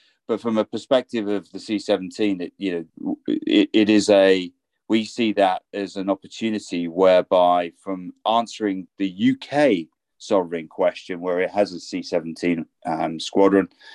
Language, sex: English, male